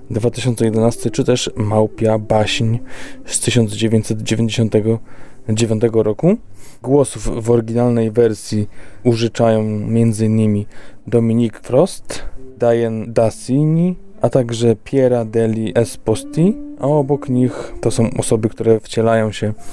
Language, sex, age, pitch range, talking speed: Polish, male, 20-39, 110-125 Hz, 95 wpm